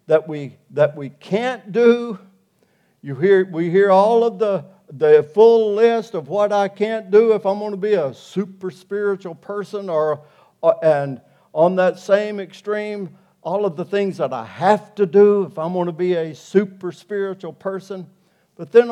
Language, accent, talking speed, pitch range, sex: English, American, 180 wpm, 160-210 Hz, male